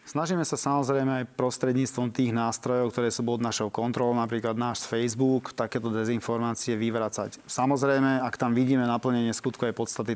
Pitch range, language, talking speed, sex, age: 120-140 Hz, Slovak, 150 wpm, male, 30-49